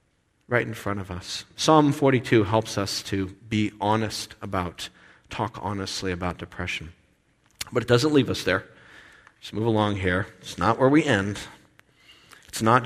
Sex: male